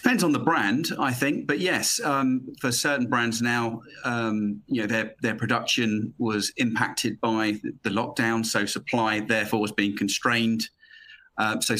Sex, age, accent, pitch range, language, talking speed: male, 40-59, British, 110-120 Hz, English, 165 wpm